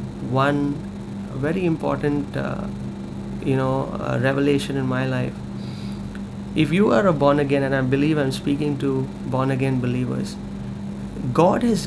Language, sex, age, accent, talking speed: English, male, 30-49, Indian, 145 wpm